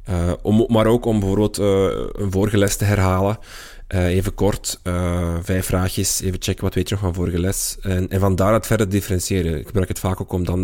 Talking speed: 225 wpm